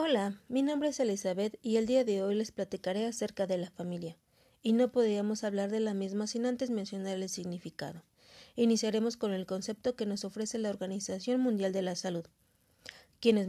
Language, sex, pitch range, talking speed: Spanish, female, 185-230 Hz, 185 wpm